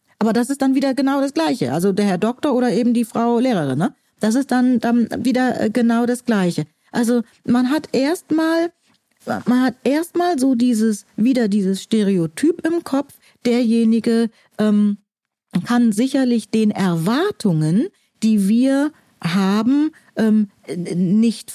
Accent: German